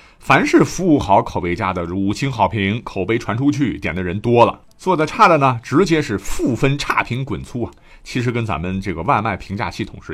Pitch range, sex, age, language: 95-140 Hz, male, 50-69, Chinese